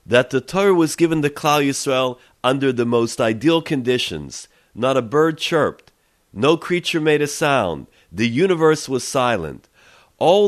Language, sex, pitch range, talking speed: English, male, 120-165 Hz, 155 wpm